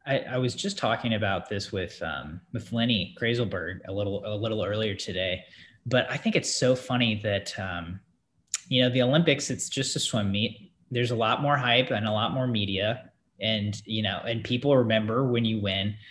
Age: 20-39